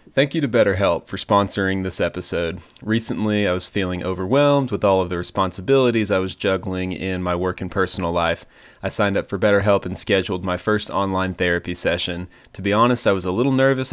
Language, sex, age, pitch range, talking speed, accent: English, male, 30-49, 95-110 Hz, 205 wpm, American